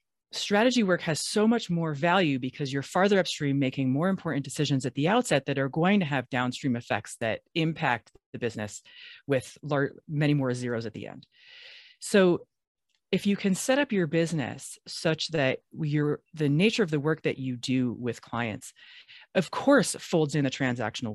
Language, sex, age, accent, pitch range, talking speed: English, female, 30-49, American, 125-185 Hz, 175 wpm